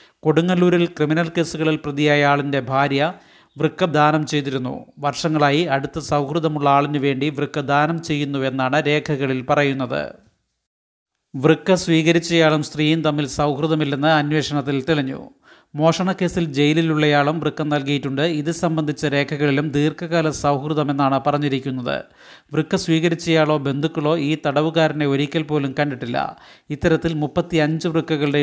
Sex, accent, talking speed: male, native, 90 wpm